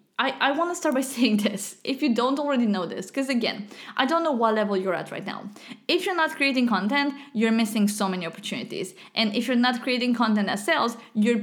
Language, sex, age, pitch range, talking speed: English, female, 20-39, 210-280 Hz, 225 wpm